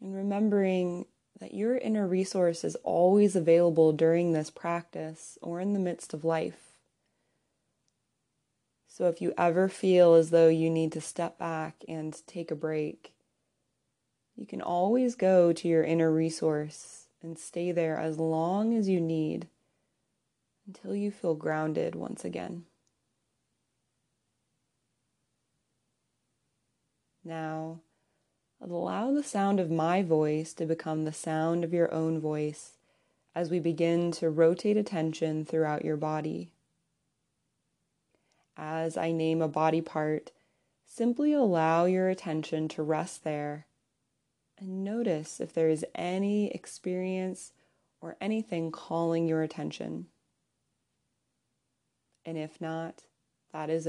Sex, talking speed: female, 120 wpm